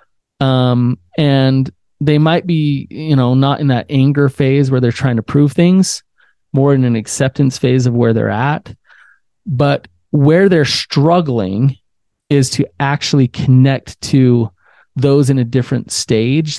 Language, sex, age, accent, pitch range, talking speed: English, male, 30-49, American, 120-145 Hz, 150 wpm